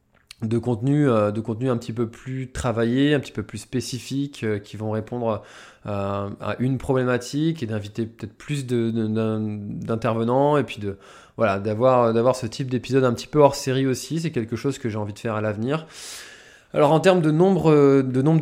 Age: 20-39